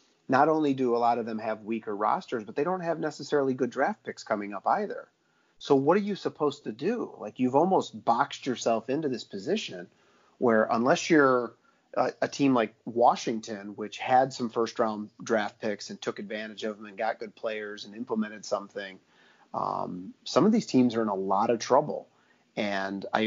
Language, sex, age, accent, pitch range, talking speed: English, male, 30-49, American, 105-130 Hz, 195 wpm